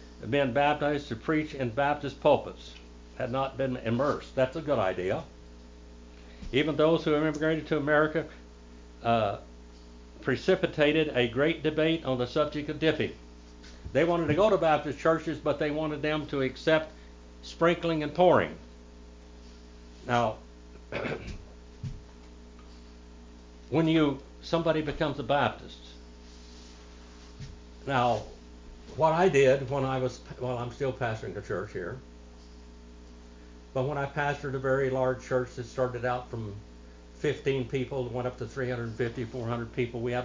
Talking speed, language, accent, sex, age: 135 wpm, English, American, male, 60-79